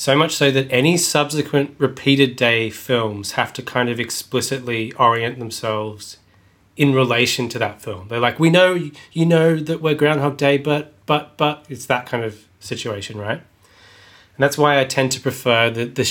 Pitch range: 105-130 Hz